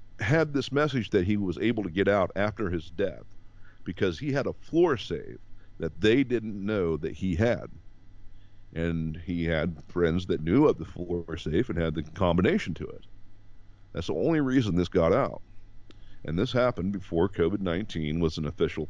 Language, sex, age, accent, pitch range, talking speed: English, male, 50-69, American, 85-105 Hz, 185 wpm